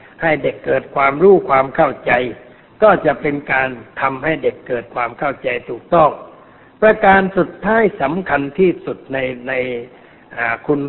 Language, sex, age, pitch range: Thai, male, 60-79, 135-170 Hz